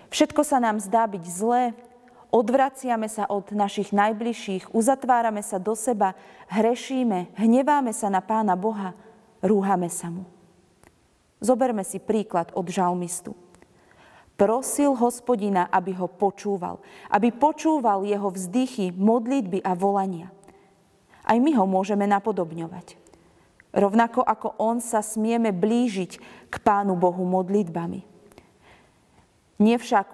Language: Slovak